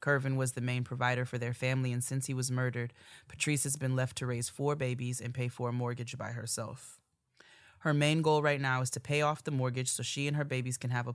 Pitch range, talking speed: 120-140 Hz, 255 wpm